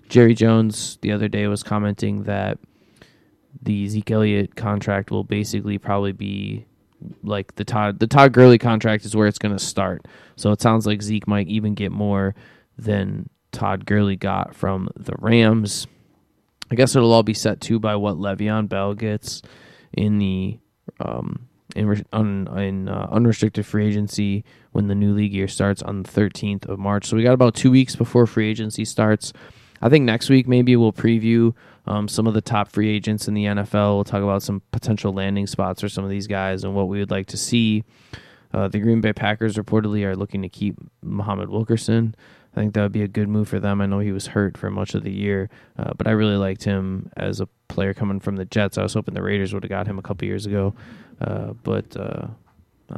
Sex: male